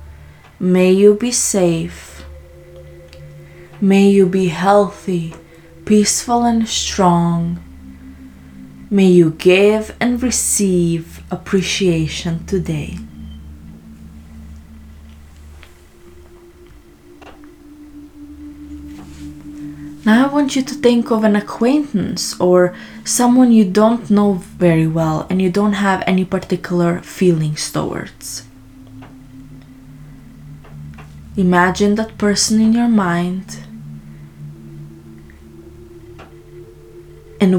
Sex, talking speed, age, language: female, 80 wpm, 20-39, English